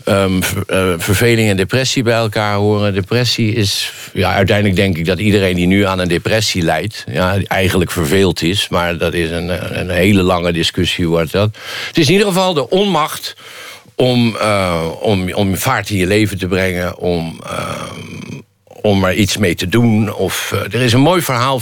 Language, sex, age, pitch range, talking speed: Dutch, male, 60-79, 95-125 Hz, 190 wpm